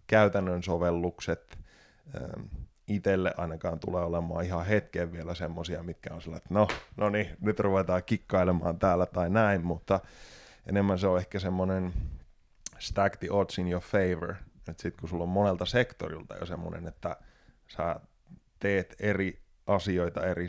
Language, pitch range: Finnish, 85-100 Hz